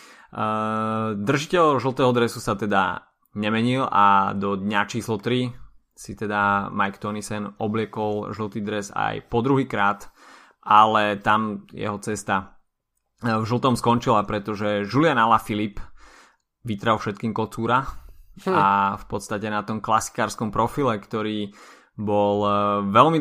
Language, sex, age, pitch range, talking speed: Slovak, male, 20-39, 105-110 Hz, 115 wpm